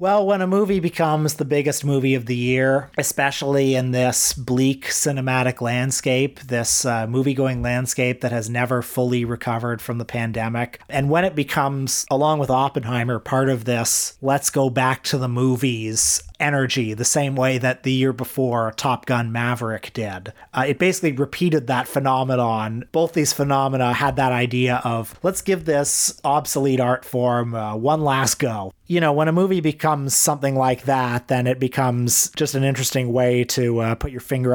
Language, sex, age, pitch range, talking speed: English, male, 30-49, 120-140 Hz, 175 wpm